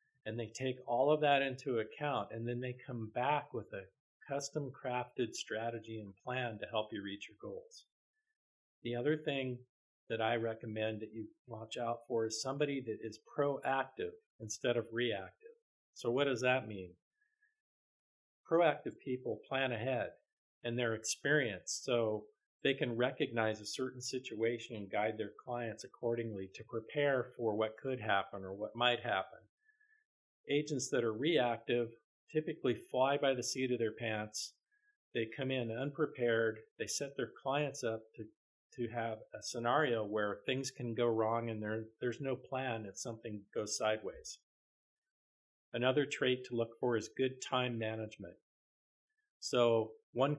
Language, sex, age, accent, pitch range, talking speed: English, male, 40-59, American, 110-135 Hz, 155 wpm